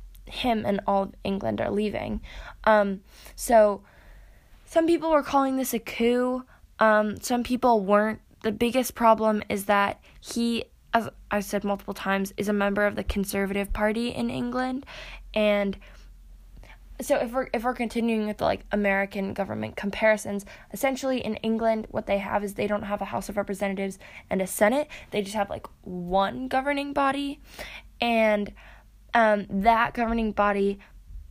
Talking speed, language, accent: 155 wpm, English, American